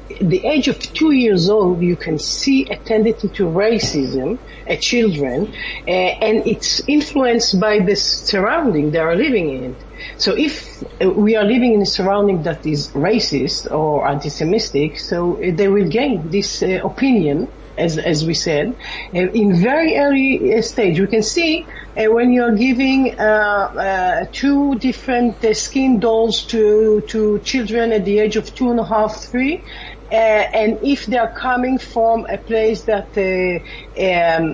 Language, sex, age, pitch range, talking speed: English, female, 50-69, 180-230 Hz, 170 wpm